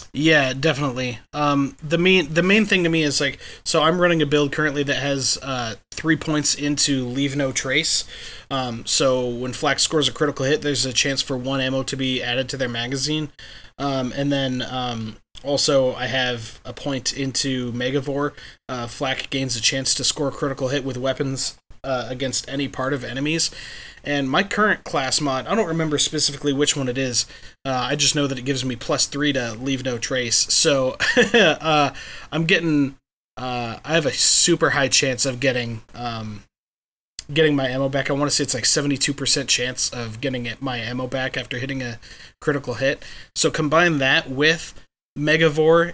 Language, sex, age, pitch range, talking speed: English, male, 20-39, 130-150 Hz, 190 wpm